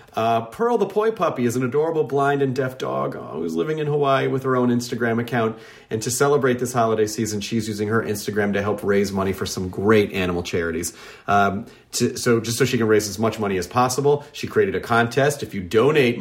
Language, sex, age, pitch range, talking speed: English, male, 40-59, 100-130 Hz, 220 wpm